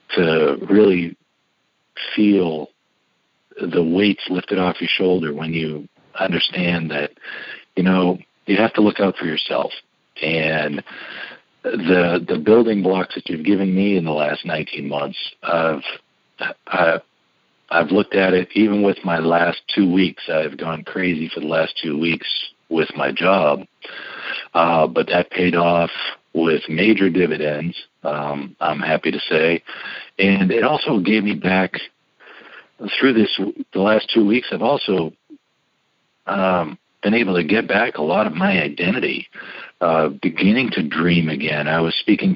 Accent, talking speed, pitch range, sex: American, 150 wpm, 80-95 Hz, male